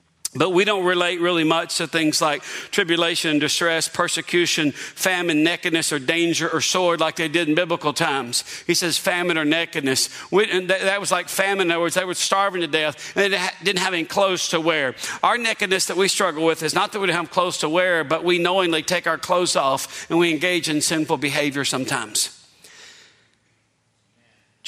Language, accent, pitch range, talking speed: English, American, 150-180 Hz, 200 wpm